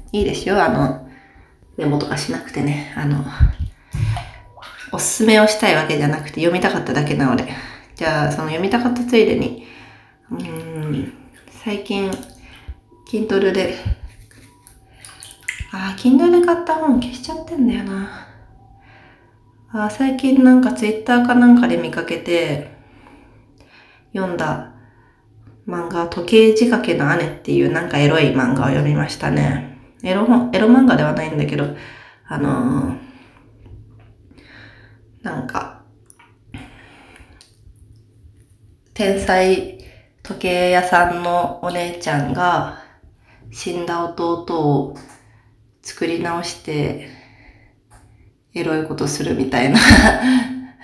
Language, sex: Japanese, female